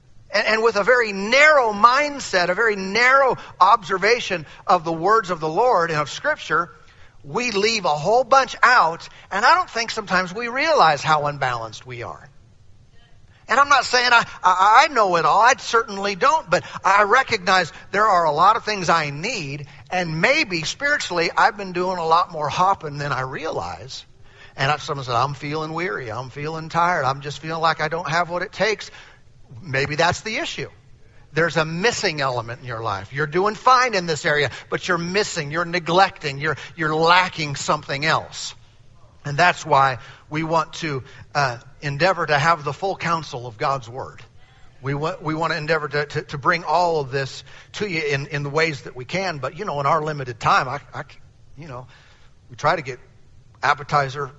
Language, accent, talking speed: English, American, 190 wpm